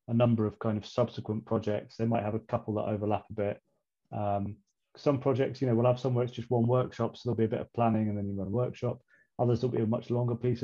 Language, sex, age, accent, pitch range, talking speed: English, male, 30-49, British, 105-125 Hz, 270 wpm